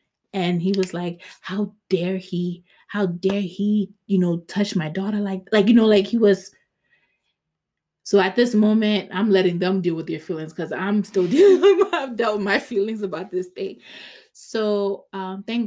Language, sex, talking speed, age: English, female, 175 wpm, 20-39